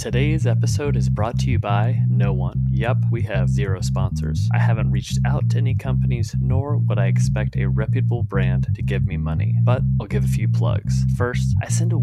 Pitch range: 65-80 Hz